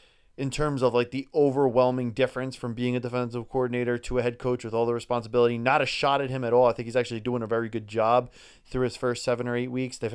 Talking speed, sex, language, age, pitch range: 260 wpm, male, English, 30-49, 120-140 Hz